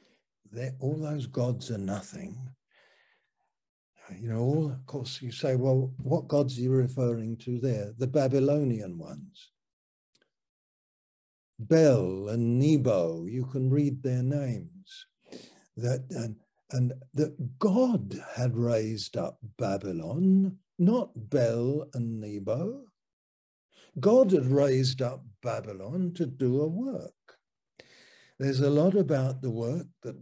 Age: 60-79